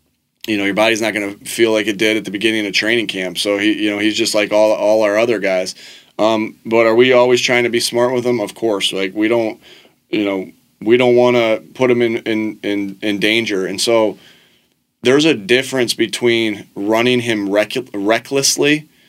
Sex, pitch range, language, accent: male, 105-120 Hz, English, American